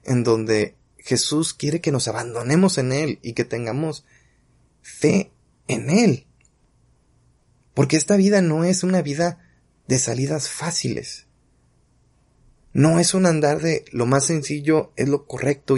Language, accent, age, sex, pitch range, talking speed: Spanish, Mexican, 30-49, male, 115-160 Hz, 135 wpm